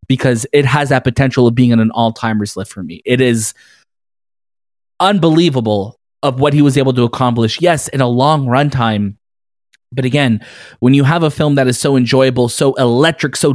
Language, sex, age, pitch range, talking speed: English, male, 20-39, 115-140 Hz, 185 wpm